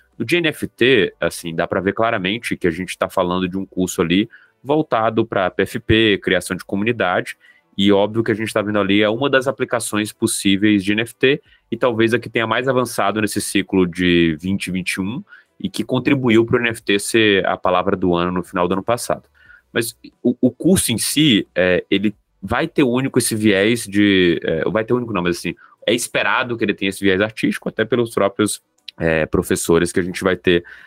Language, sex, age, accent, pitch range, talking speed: Portuguese, male, 20-39, Brazilian, 90-115 Hz, 200 wpm